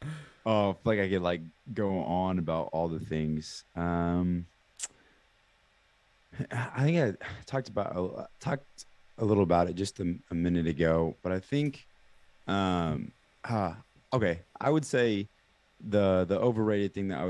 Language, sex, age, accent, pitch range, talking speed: English, male, 20-39, American, 80-100 Hz, 155 wpm